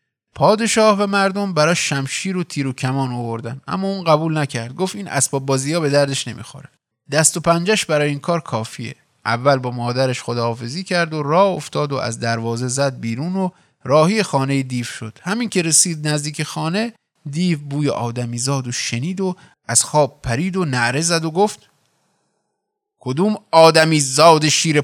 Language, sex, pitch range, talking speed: Persian, male, 130-175 Hz, 165 wpm